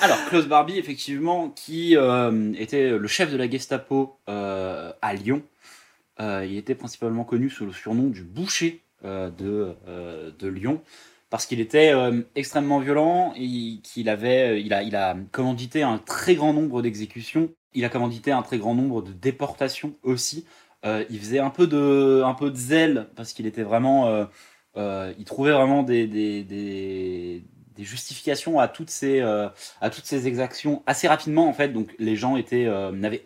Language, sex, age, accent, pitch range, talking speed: French, male, 20-39, French, 105-145 Hz, 180 wpm